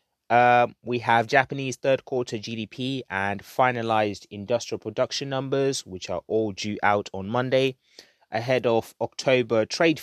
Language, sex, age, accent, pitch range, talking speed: English, male, 20-39, British, 110-135 Hz, 140 wpm